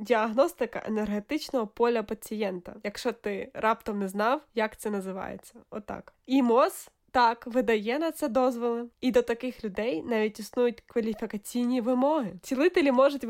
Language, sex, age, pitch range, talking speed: Ukrainian, female, 20-39, 215-265 Hz, 140 wpm